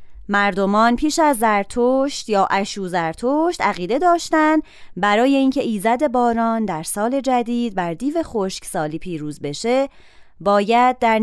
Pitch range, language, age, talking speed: 195-270 Hz, Persian, 20-39, 130 wpm